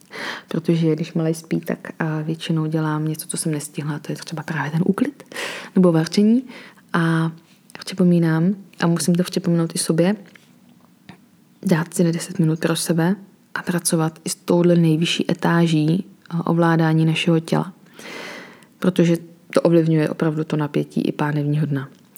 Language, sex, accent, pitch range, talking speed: Czech, female, native, 160-185 Hz, 150 wpm